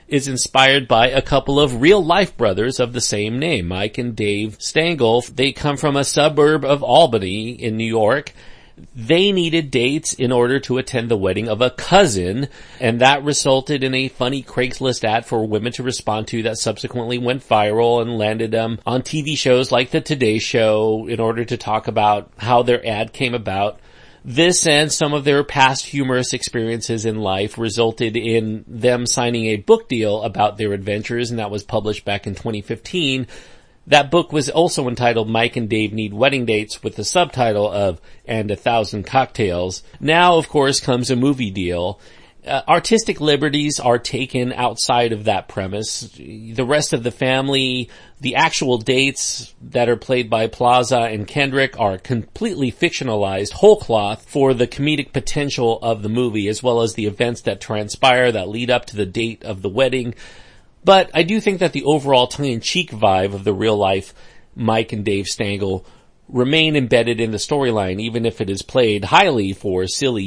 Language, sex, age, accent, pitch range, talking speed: English, male, 40-59, American, 110-135 Hz, 180 wpm